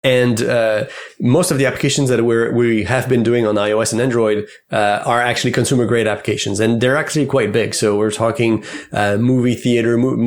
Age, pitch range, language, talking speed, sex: 30-49, 115-135 Hz, English, 200 wpm, male